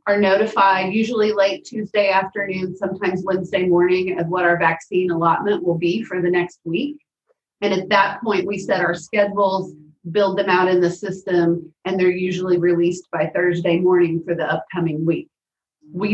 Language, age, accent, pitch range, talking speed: English, 30-49, American, 170-205 Hz, 170 wpm